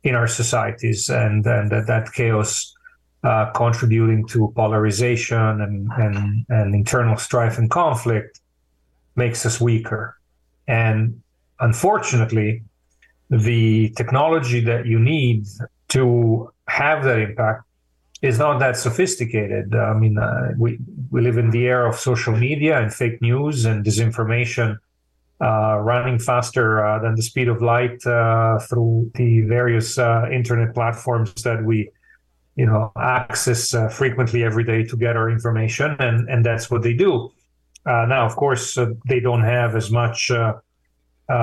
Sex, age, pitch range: male, 40-59, 110-125 Hz